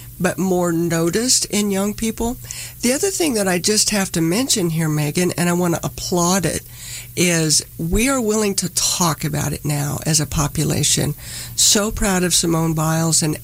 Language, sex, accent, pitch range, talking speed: English, female, American, 150-185 Hz, 185 wpm